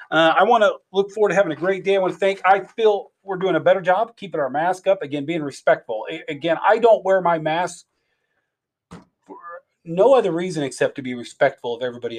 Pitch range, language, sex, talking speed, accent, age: 130-175 Hz, English, male, 220 wpm, American, 40-59